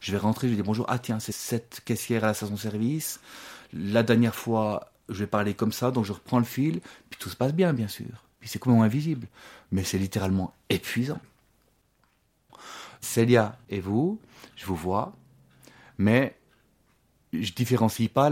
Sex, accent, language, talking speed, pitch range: male, French, French, 175 wpm, 105-135 Hz